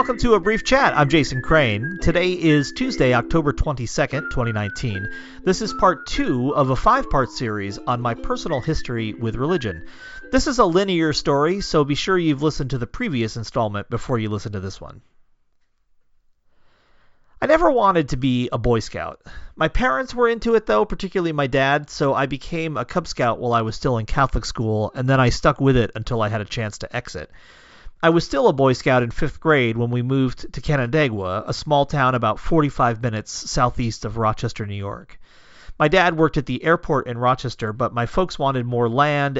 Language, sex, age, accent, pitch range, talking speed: English, male, 40-59, American, 115-155 Hz, 200 wpm